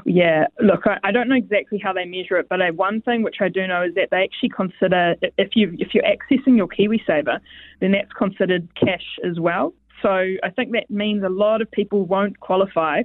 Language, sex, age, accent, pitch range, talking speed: English, female, 20-39, Australian, 185-215 Hz, 220 wpm